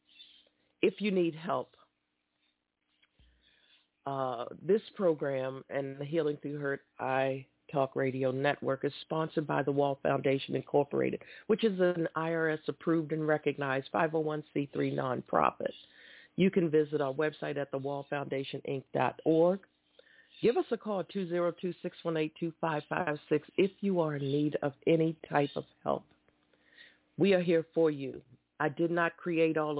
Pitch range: 135-165 Hz